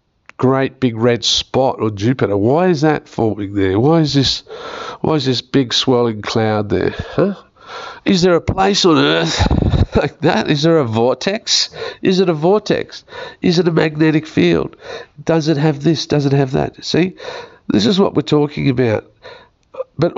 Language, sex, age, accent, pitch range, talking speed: English, male, 50-69, Australian, 120-170 Hz, 175 wpm